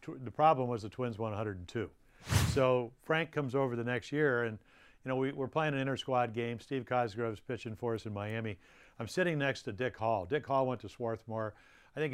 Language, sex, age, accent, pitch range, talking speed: English, male, 60-79, American, 110-135 Hz, 215 wpm